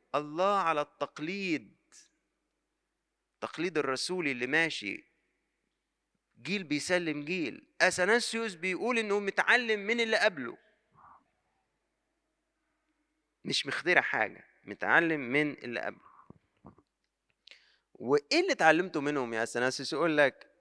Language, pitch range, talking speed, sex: Arabic, 130-195 Hz, 95 wpm, male